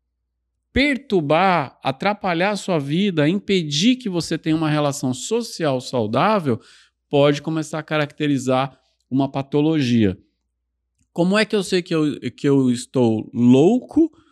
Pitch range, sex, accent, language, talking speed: 120-175 Hz, male, Brazilian, Portuguese, 120 wpm